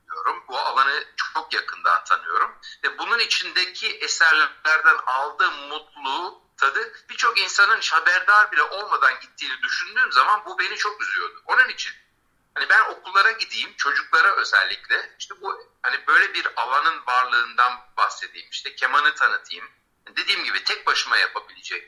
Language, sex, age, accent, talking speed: Turkish, male, 60-79, native, 130 wpm